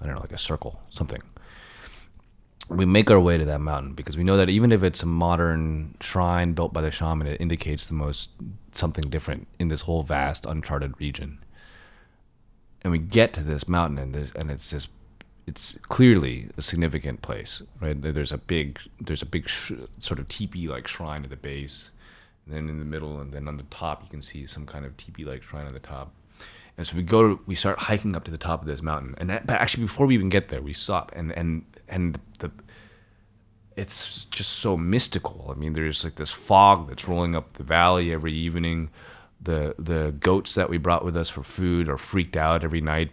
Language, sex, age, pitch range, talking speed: English, male, 30-49, 75-95 Hz, 215 wpm